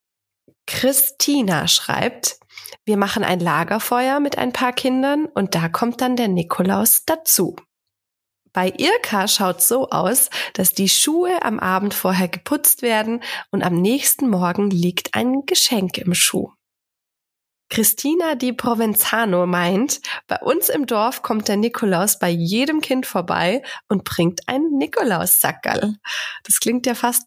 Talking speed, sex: 140 wpm, female